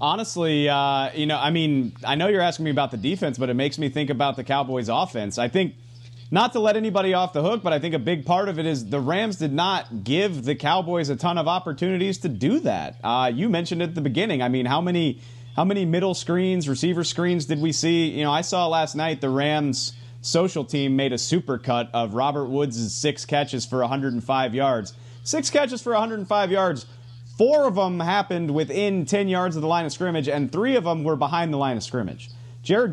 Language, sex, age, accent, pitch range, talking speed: English, male, 30-49, American, 135-185 Hz, 230 wpm